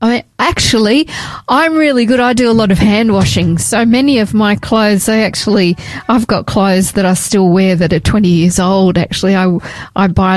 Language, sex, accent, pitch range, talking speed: English, female, Australian, 180-210 Hz, 210 wpm